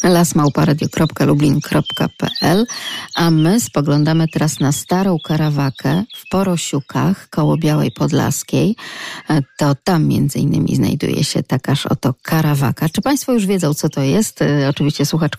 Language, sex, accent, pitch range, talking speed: Polish, female, native, 145-180 Hz, 120 wpm